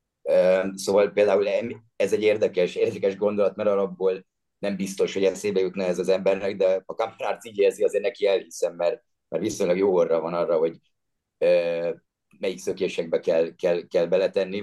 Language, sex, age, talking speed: Hungarian, male, 30-49, 160 wpm